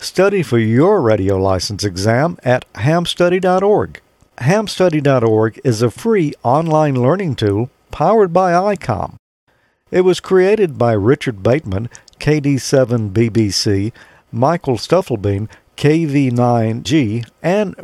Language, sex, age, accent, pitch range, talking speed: English, male, 50-69, American, 115-170 Hz, 100 wpm